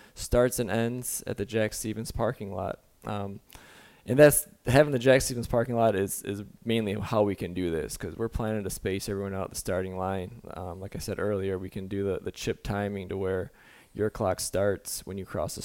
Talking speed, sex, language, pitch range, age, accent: 220 wpm, male, English, 100-115 Hz, 20-39, American